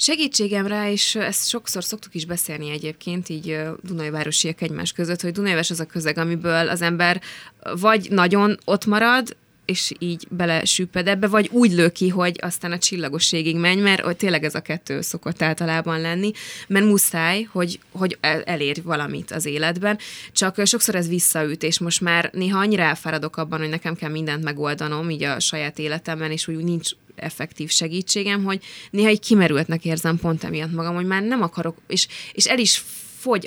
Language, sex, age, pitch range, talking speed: Hungarian, female, 20-39, 160-195 Hz, 170 wpm